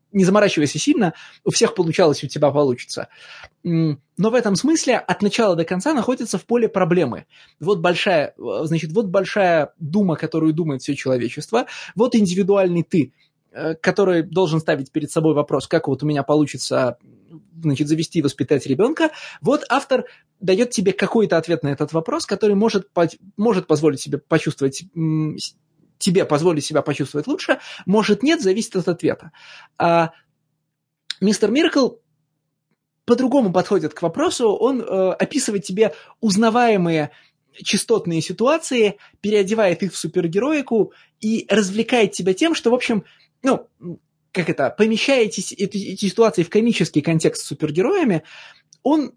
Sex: male